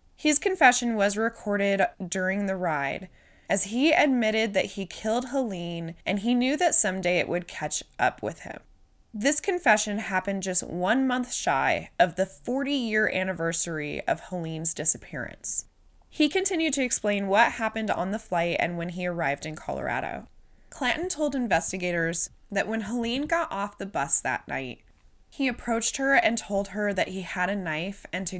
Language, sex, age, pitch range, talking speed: English, female, 20-39, 180-245 Hz, 165 wpm